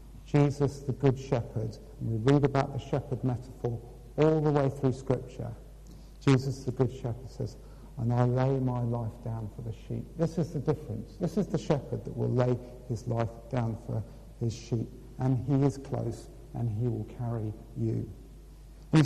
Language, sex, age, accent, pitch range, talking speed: English, male, 50-69, British, 120-145 Hz, 180 wpm